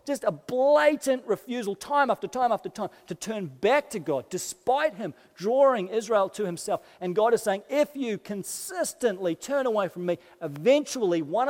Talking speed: 170 wpm